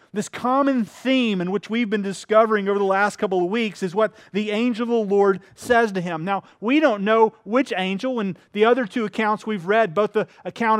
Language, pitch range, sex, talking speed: English, 185-230 Hz, male, 220 wpm